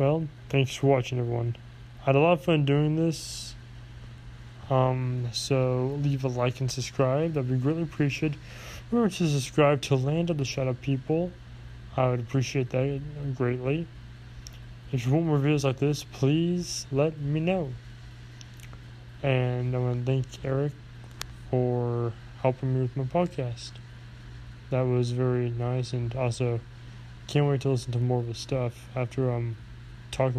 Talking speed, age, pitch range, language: 155 wpm, 20-39, 120-140 Hz, English